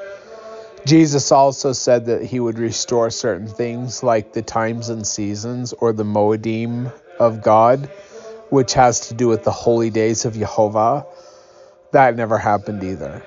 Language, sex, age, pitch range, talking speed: English, male, 30-49, 110-130 Hz, 150 wpm